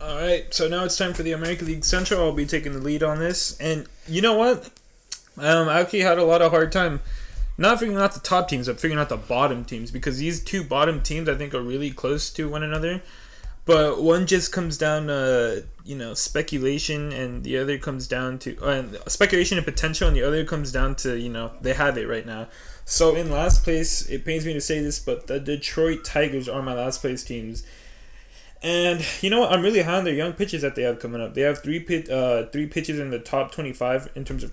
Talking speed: 240 wpm